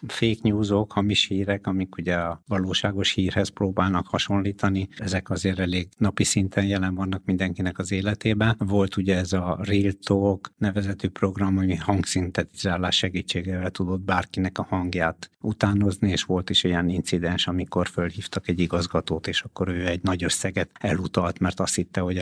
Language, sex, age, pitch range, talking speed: Hungarian, male, 60-79, 90-100 Hz, 155 wpm